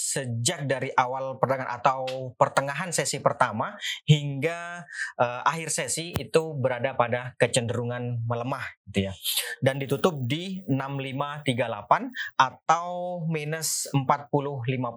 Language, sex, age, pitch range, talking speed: Indonesian, male, 30-49, 115-150 Hz, 105 wpm